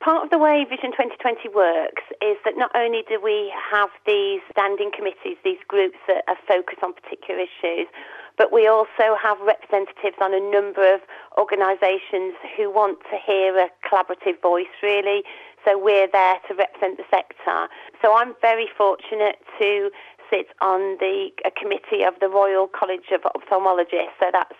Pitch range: 190-225 Hz